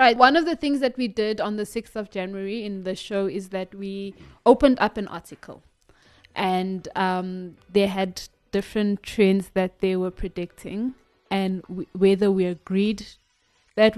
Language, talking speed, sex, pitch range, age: English, 165 wpm, female, 185-220 Hz, 20-39